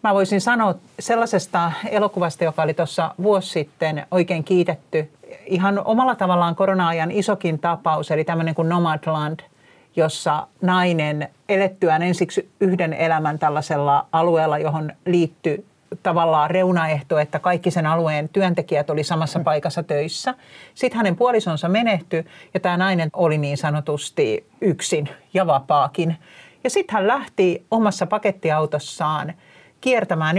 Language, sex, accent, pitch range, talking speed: Finnish, male, native, 155-195 Hz, 125 wpm